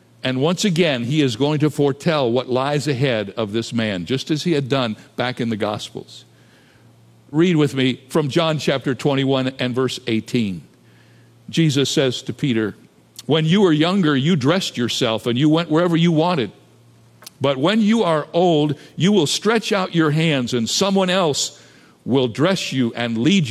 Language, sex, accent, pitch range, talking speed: English, male, American, 125-170 Hz, 175 wpm